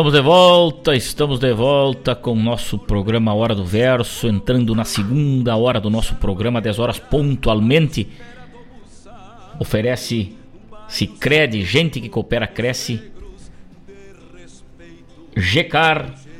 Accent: Brazilian